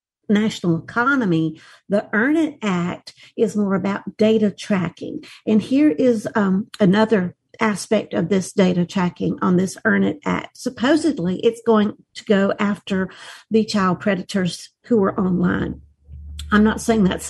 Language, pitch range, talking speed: English, 185-225 Hz, 145 wpm